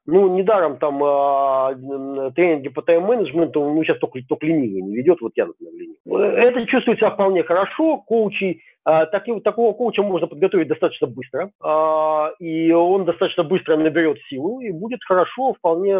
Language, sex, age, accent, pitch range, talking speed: Russian, male, 40-59, native, 160-230 Hz, 160 wpm